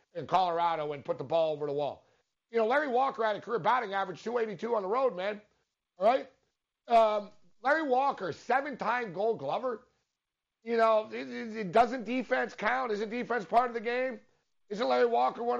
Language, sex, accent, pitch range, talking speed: English, male, American, 175-240 Hz, 175 wpm